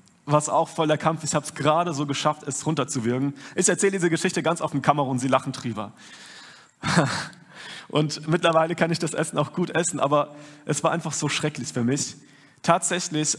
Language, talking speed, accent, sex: German, 185 wpm, German, male